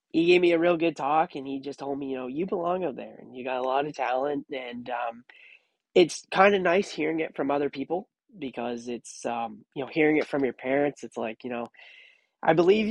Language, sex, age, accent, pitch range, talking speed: English, male, 20-39, American, 130-160 Hz, 240 wpm